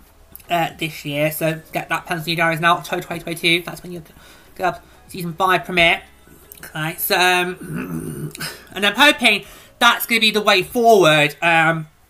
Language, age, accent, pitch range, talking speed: English, 20-39, British, 155-205 Hz, 175 wpm